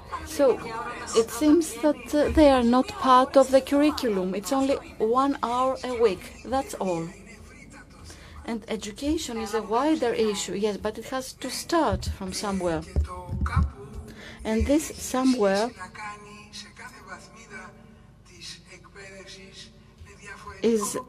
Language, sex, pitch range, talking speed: Greek, female, 205-260 Hz, 110 wpm